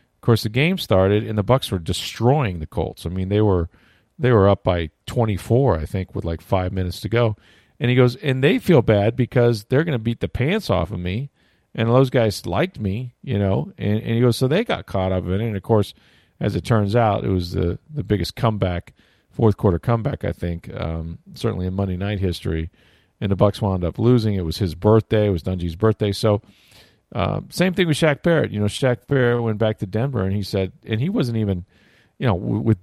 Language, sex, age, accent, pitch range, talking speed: English, male, 40-59, American, 95-125 Hz, 235 wpm